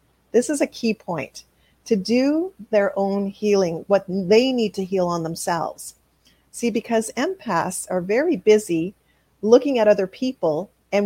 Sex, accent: female, American